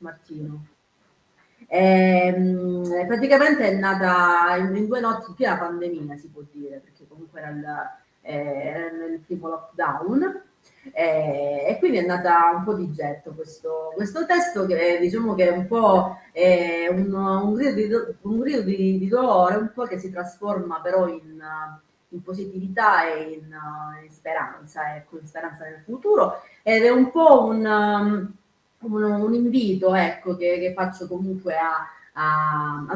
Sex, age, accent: female, 30-49, native